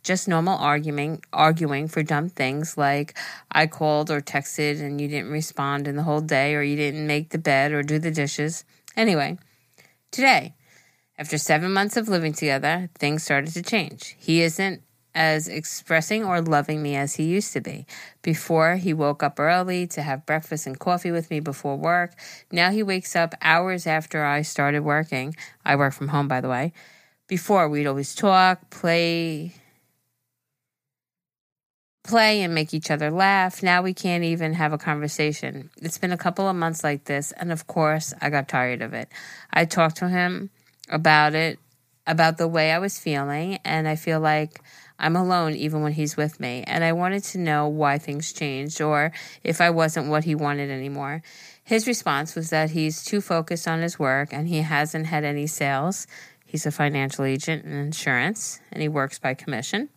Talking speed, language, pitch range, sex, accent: 185 wpm, English, 145-170 Hz, female, American